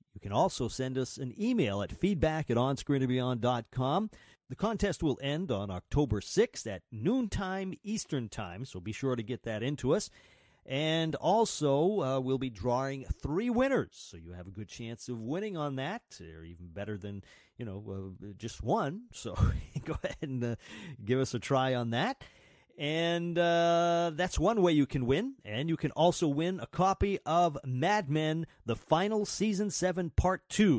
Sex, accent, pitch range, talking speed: male, American, 110-160 Hz, 180 wpm